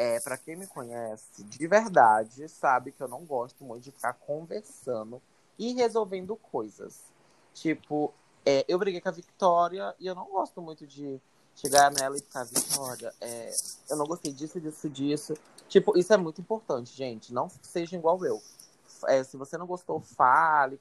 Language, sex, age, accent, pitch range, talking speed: Portuguese, male, 20-39, Brazilian, 130-190 Hz, 160 wpm